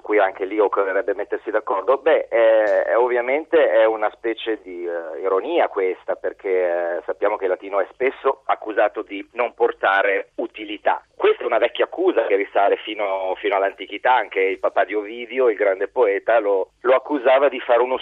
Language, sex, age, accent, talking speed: Italian, male, 40-59, native, 170 wpm